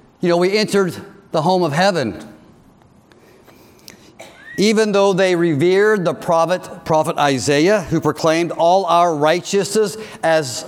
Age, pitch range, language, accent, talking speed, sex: 50-69, 155-205 Hz, English, American, 125 wpm, male